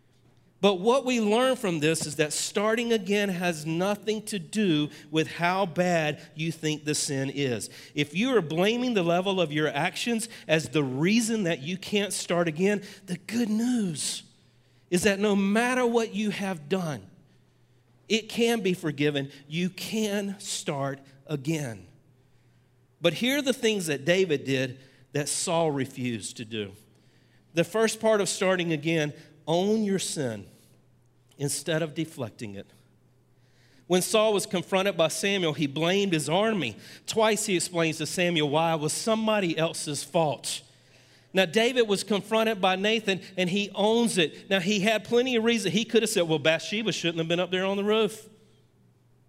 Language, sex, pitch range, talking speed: English, male, 145-205 Hz, 165 wpm